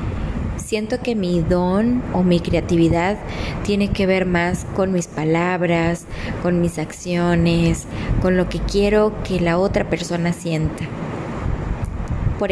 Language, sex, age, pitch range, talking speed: Spanish, female, 20-39, 165-190 Hz, 130 wpm